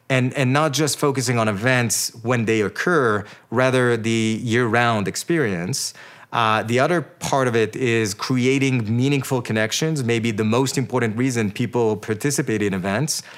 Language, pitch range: English, 110-130 Hz